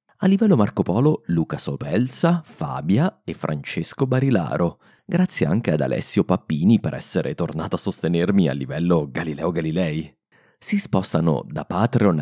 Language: Italian